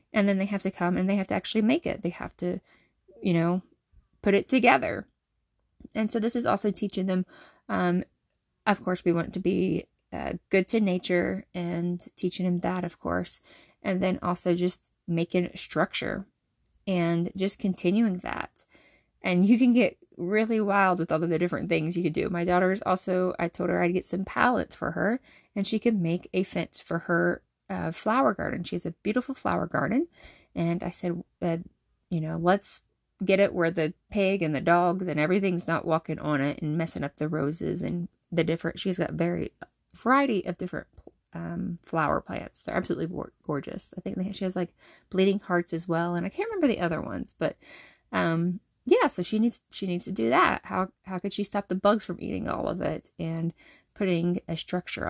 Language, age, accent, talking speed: English, 20-39, American, 205 wpm